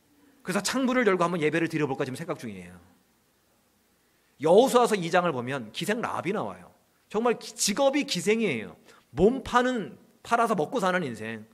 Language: Korean